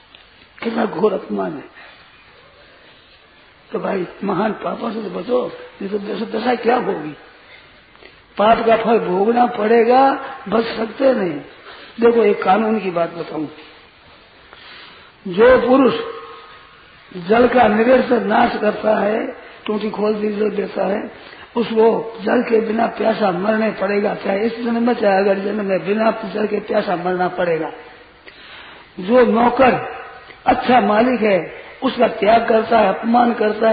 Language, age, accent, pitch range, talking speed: Hindi, 50-69, native, 210-235 Hz, 140 wpm